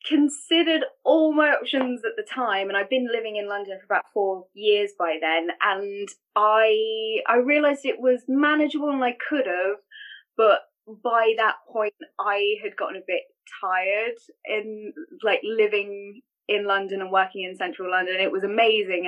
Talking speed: 165 wpm